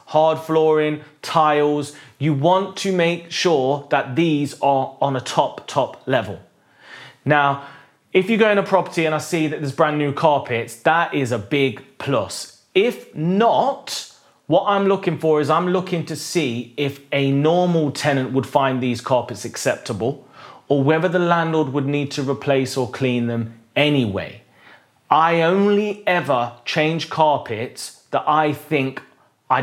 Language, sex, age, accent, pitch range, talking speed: English, male, 30-49, British, 130-165 Hz, 155 wpm